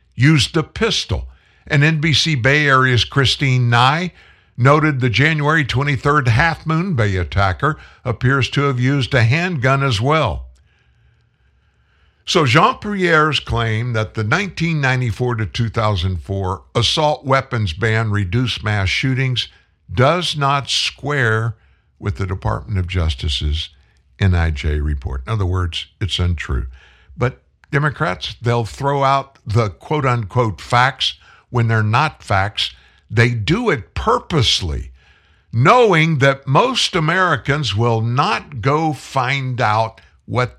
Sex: male